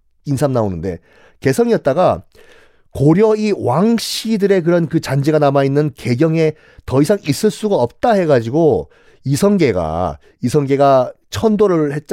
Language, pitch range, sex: Korean, 120-195 Hz, male